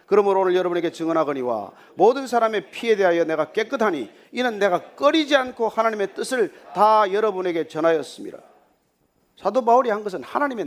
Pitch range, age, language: 200-290 Hz, 40-59, Korean